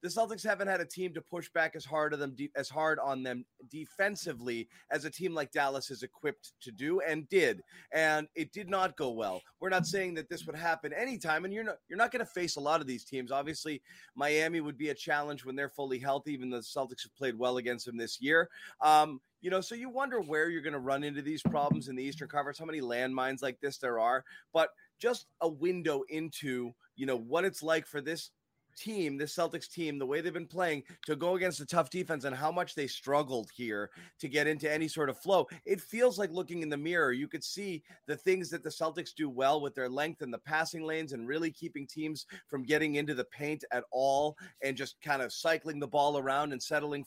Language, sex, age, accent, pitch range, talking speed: English, male, 30-49, American, 135-170 Hz, 240 wpm